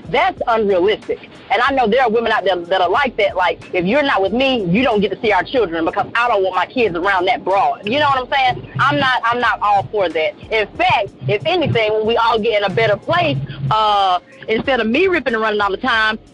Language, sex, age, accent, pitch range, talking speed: English, female, 30-49, American, 185-245 Hz, 255 wpm